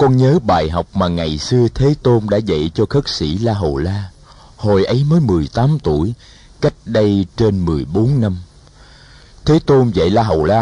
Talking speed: 200 wpm